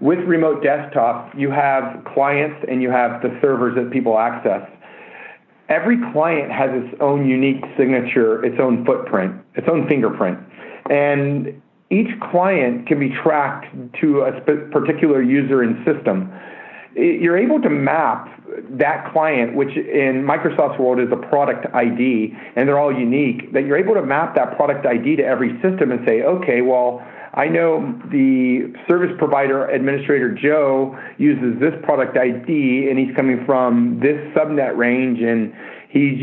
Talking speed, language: 150 wpm, English